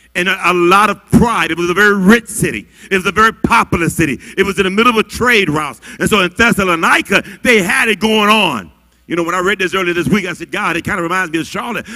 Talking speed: 270 wpm